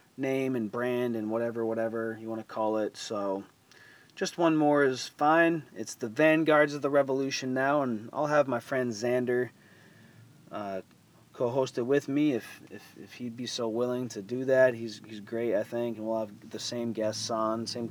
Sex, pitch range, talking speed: male, 105-135 Hz, 195 wpm